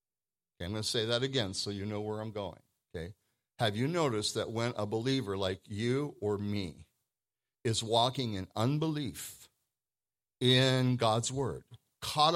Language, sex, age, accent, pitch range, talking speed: English, male, 50-69, American, 100-140 Hz, 155 wpm